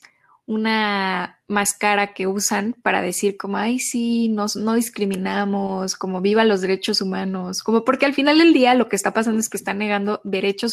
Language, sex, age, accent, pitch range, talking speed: Spanish, female, 10-29, Mexican, 195-230 Hz, 180 wpm